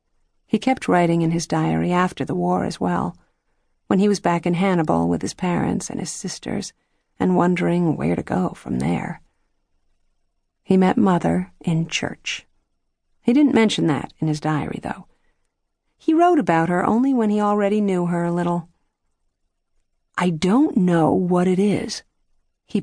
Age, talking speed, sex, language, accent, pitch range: 50-69, 165 wpm, female, English, American, 140-215 Hz